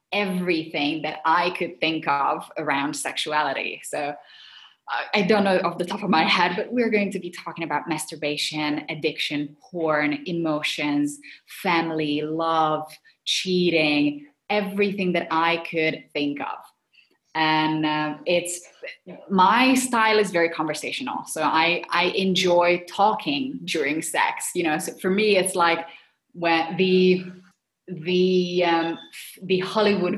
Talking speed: 130 wpm